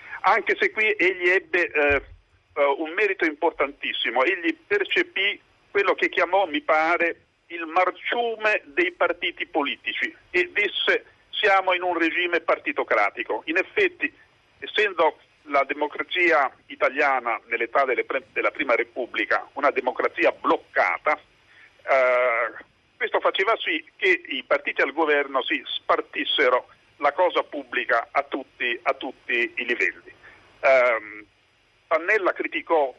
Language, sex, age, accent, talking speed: Italian, male, 50-69, native, 120 wpm